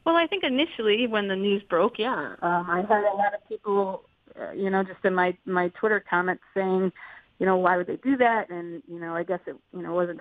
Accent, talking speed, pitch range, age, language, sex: American, 245 wpm, 180-220 Hz, 30-49, English, female